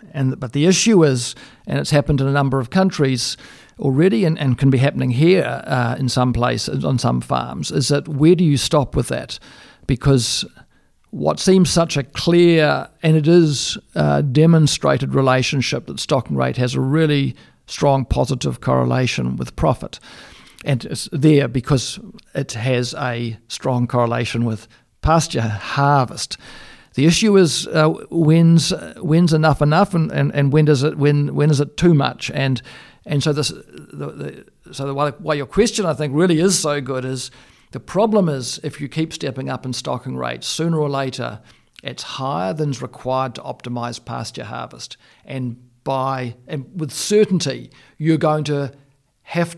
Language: English